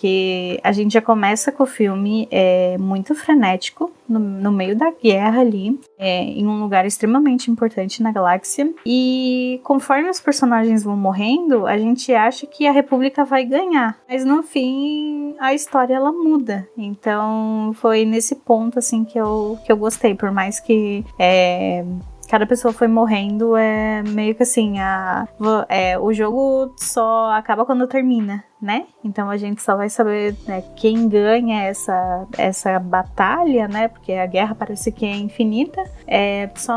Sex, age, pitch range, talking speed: female, 10-29, 195-245 Hz, 150 wpm